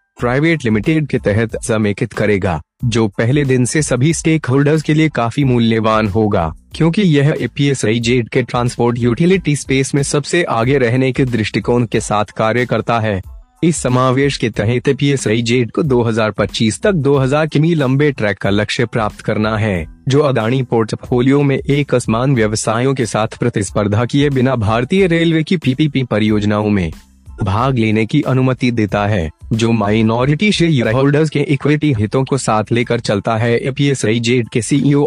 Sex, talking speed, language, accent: male, 165 wpm, Hindi, native